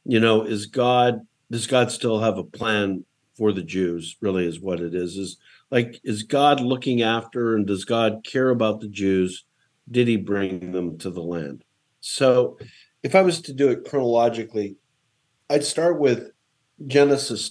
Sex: male